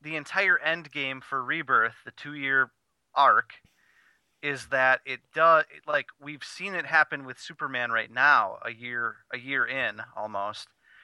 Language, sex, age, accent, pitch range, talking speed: English, male, 30-49, American, 120-150 Hz, 150 wpm